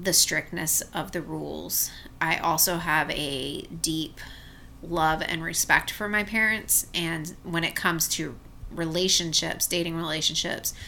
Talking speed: 130 wpm